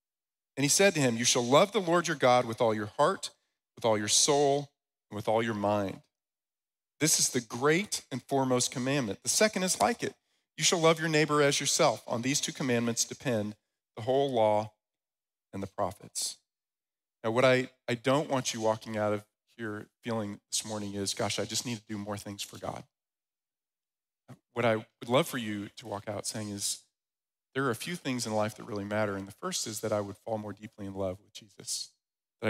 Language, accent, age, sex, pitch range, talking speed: English, American, 40-59, male, 105-130 Hz, 215 wpm